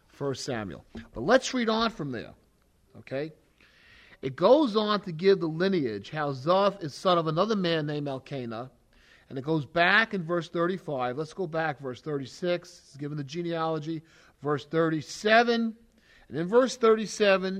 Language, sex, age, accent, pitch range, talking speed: English, male, 40-59, American, 135-195 Hz, 160 wpm